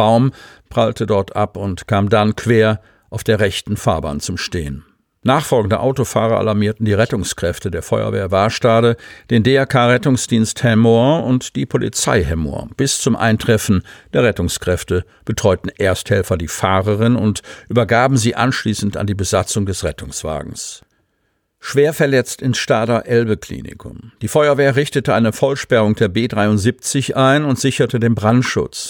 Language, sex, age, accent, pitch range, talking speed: German, male, 50-69, German, 95-120 Hz, 135 wpm